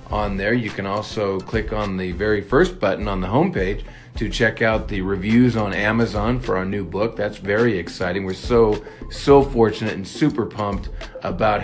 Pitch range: 100-125 Hz